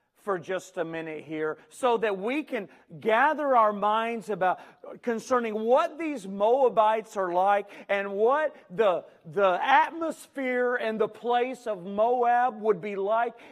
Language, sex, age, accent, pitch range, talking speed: English, male, 40-59, American, 175-250 Hz, 140 wpm